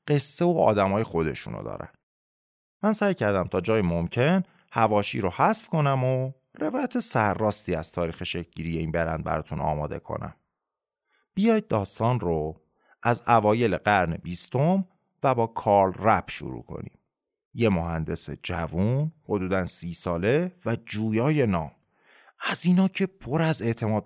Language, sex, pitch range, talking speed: Persian, male, 95-160 Hz, 135 wpm